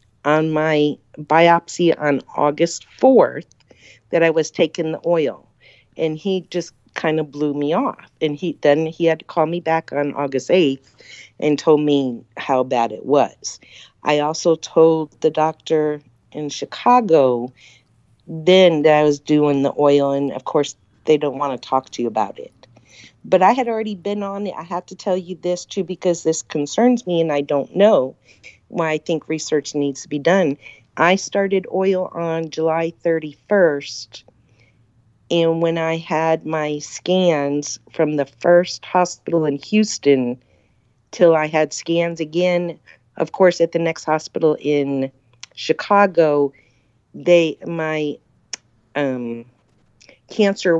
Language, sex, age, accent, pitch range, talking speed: English, female, 50-69, American, 140-170 Hz, 155 wpm